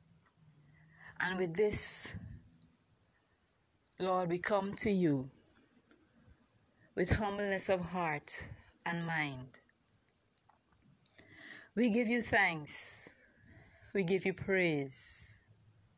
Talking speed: 85 wpm